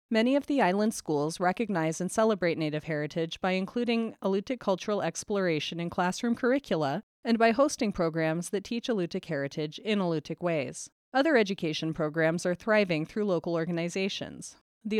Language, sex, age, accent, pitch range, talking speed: English, female, 30-49, American, 175-230 Hz, 150 wpm